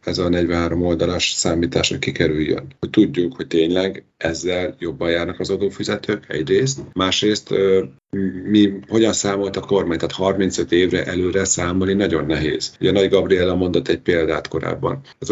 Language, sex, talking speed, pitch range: Hungarian, male, 150 wpm, 85-95 Hz